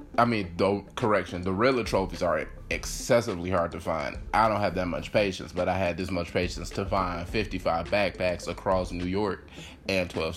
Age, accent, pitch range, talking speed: 20-39, American, 90-110 Hz, 190 wpm